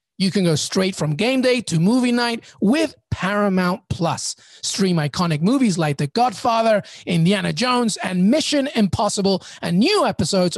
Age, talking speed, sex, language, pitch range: 30-49, 155 wpm, male, English, 170-235 Hz